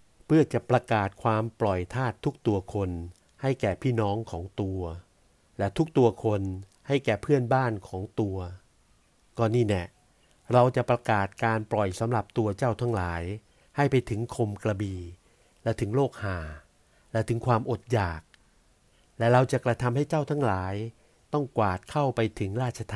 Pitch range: 95-120 Hz